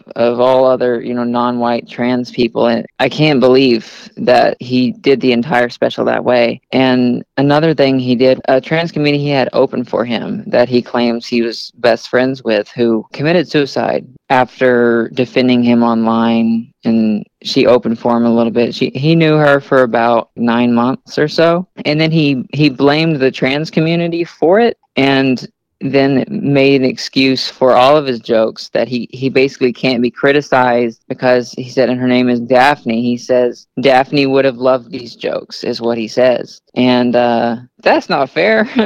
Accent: American